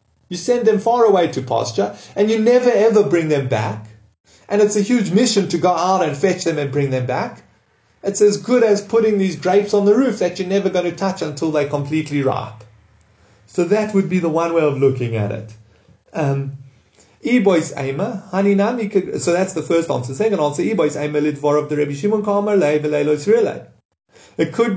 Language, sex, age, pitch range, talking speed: English, male, 30-49, 140-205 Hz, 170 wpm